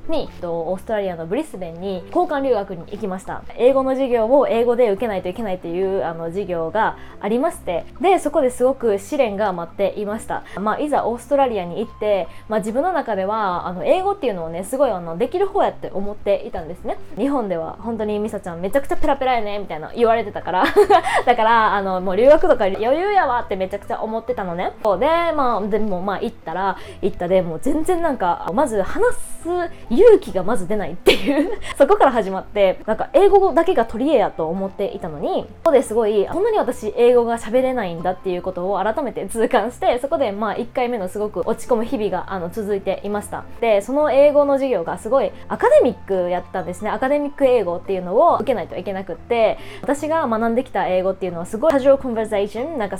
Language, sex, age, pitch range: Japanese, female, 20-39, 190-275 Hz